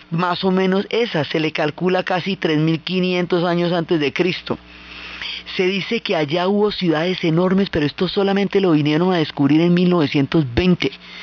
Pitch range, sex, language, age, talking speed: 150-180 Hz, female, Spanish, 30-49, 155 wpm